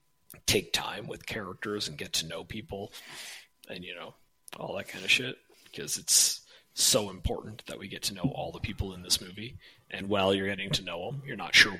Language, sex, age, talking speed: English, male, 30-49, 215 wpm